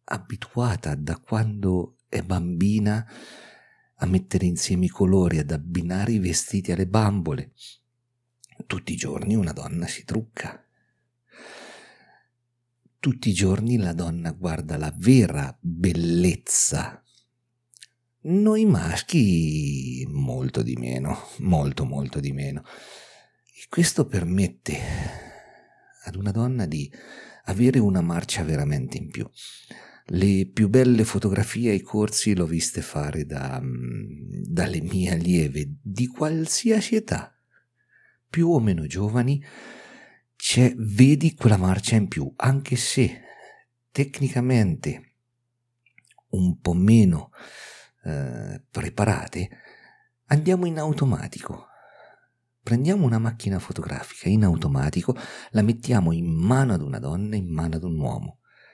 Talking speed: 110 wpm